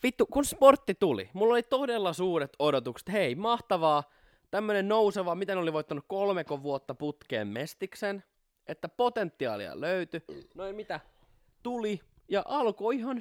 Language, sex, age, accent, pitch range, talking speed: Finnish, male, 20-39, native, 135-210 Hz, 135 wpm